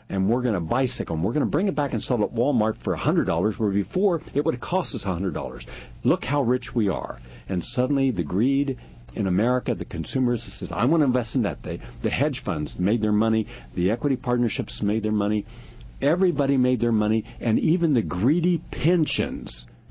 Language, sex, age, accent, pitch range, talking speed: English, male, 60-79, American, 105-140 Hz, 220 wpm